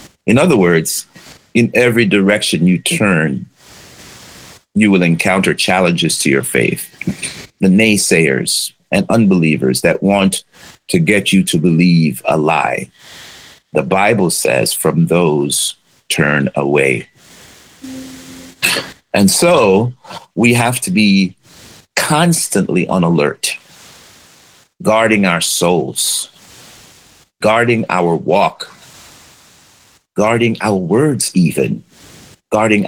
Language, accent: English, American